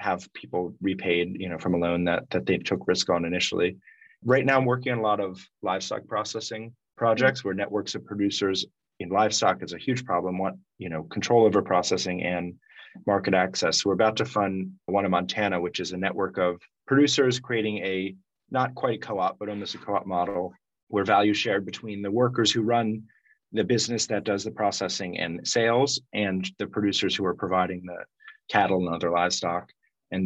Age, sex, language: 30-49, male, English